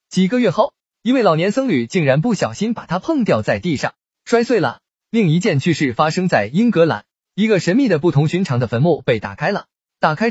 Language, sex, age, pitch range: Chinese, male, 20-39, 165-250 Hz